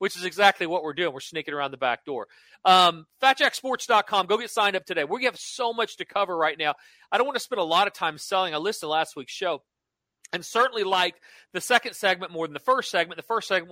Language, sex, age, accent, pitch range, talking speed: English, male, 40-59, American, 175-230 Hz, 250 wpm